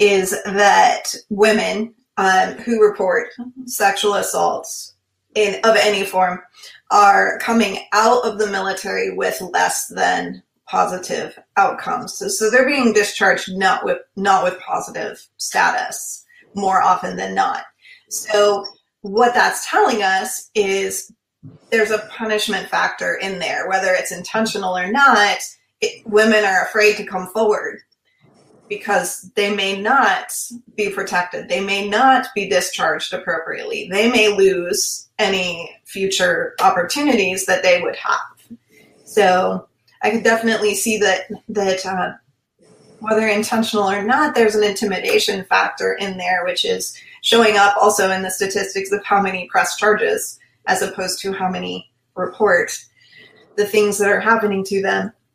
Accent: American